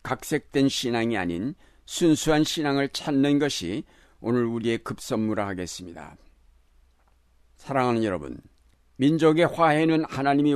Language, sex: Korean, male